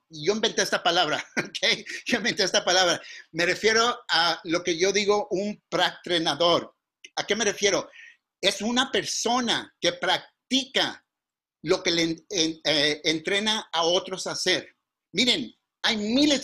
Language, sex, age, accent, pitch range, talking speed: English, male, 50-69, Mexican, 175-230 Hz, 145 wpm